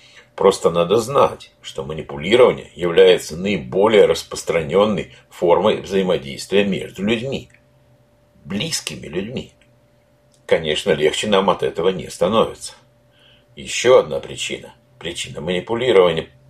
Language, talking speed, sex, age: Russian, 95 wpm, male, 60-79